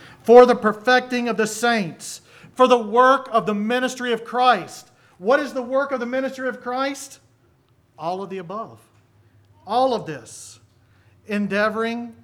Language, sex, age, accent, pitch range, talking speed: English, male, 40-59, American, 150-225 Hz, 150 wpm